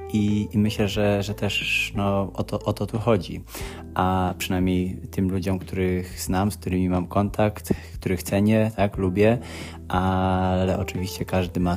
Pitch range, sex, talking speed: 90-100 Hz, male, 160 wpm